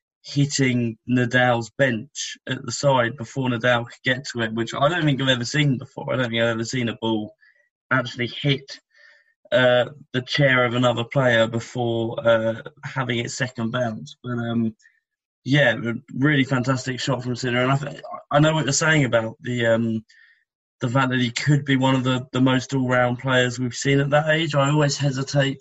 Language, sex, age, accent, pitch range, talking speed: English, male, 20-39, British, 115-135 Hz, 185 wpm